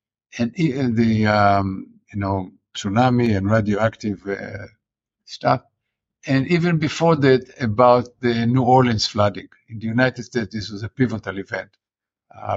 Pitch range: 110-130 Hz